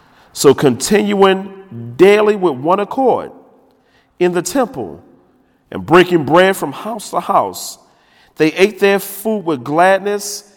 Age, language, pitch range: 40-59, English, 110-155 Hz